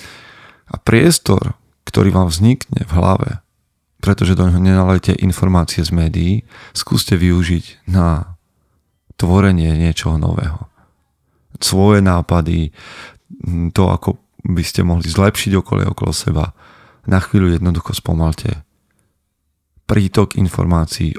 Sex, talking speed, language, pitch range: male, 100 wpm, Slovak, 85-105 Hz